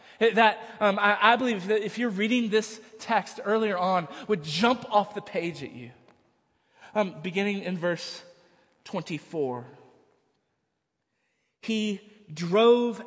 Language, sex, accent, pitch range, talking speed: English, male, American, 135-190 Hz, 125 wpm